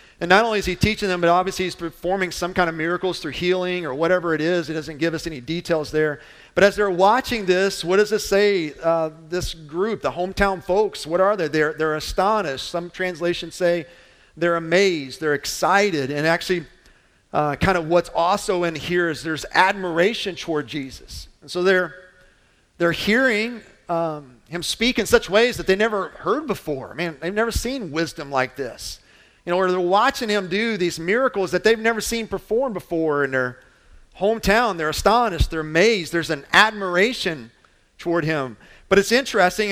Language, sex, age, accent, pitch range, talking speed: English, male, 40-59, American, 165-205 Hz, 185 wpm